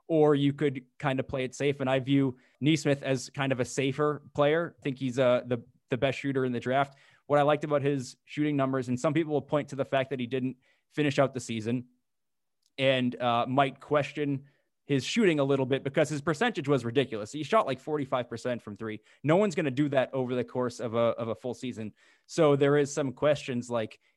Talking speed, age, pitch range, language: 230 wpm, 20-39, 125-145 Hz, English